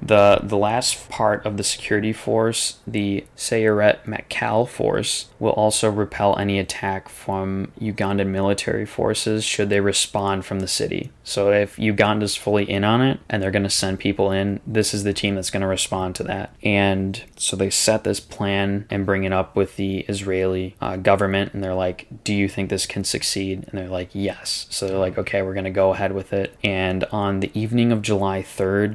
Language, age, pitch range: English, 20-39, 95-110 Hz